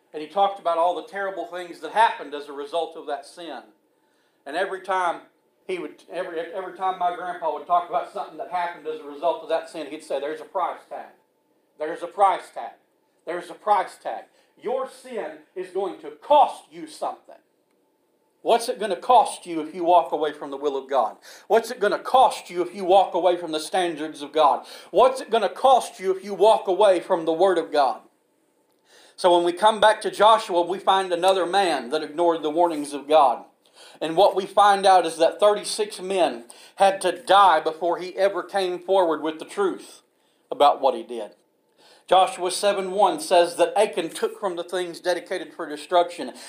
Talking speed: 205 wpm